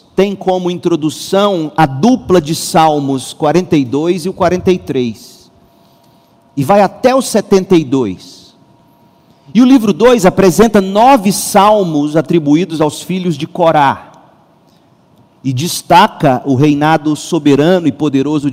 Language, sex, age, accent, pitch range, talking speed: Portuguese, male, 40-59, Brazilian, 155-200 Hz, 115 wpm